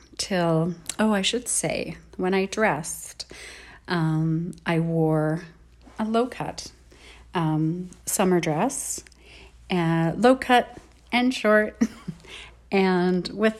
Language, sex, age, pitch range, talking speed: English, female, 30-49, 165-210 Hz, 95 wpm